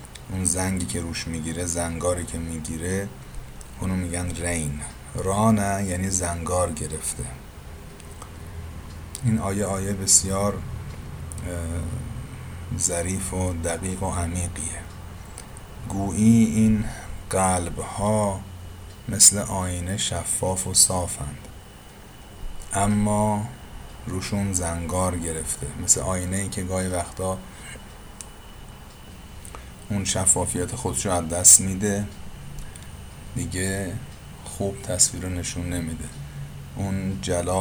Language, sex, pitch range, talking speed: Persian, male, 85-95 Hz, 90 wpm